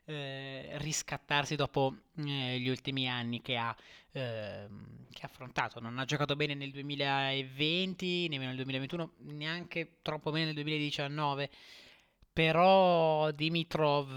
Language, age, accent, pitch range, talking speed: Italian, 20-39, native, 135-160 Hz, 115 wpm